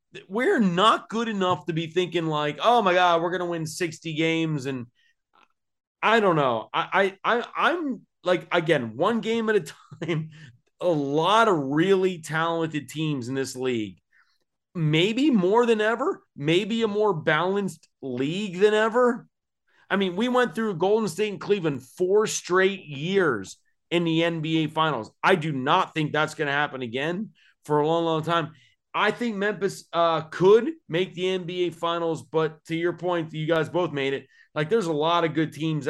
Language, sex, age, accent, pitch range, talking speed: English, male, 30-49, American, 155-215 Hz, 180 wpm